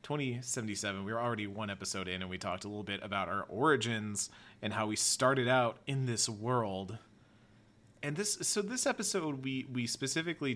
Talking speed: 180 wpm